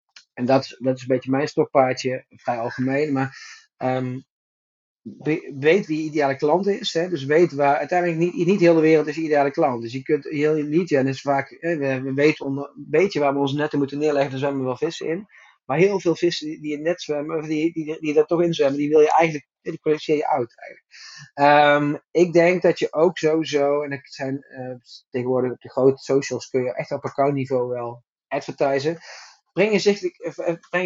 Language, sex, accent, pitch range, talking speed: Dutch, male, Dutch, 135-170 Hz, 210 wpm